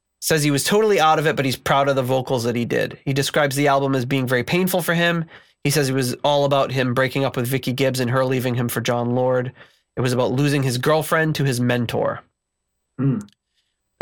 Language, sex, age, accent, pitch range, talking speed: English, male, 20-39, American, 120-150 Hz, 235 wpm